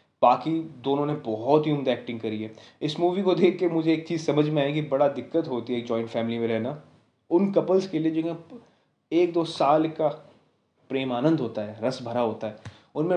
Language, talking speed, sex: Hindi, 220 wpm, male